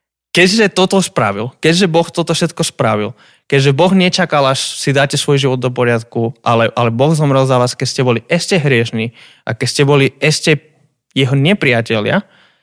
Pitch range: 120-160 Hz